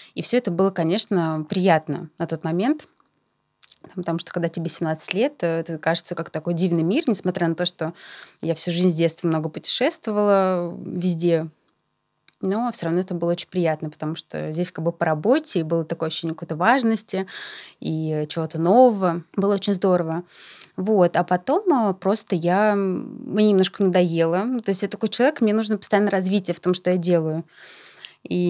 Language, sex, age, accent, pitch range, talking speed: Russian, female, 20-39, native, 170-200 Hz, 170 wpm